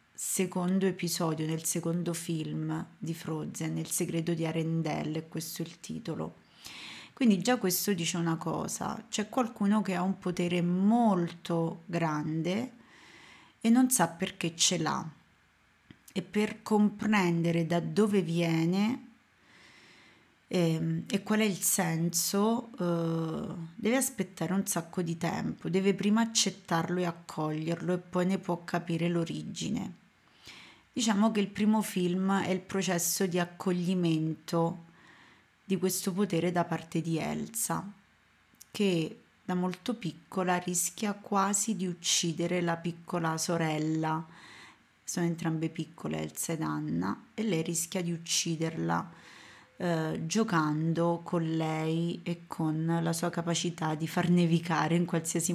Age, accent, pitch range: 30-49, native, 165-190 Hz